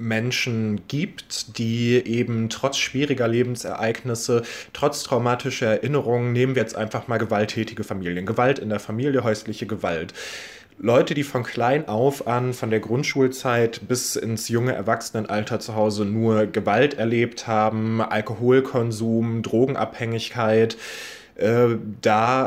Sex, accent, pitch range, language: male, German, 110-125 Hz, German